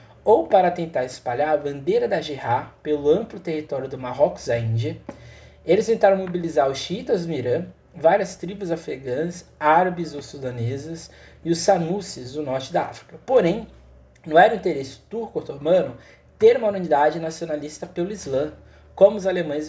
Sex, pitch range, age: male, 125-185 Hz, 20-39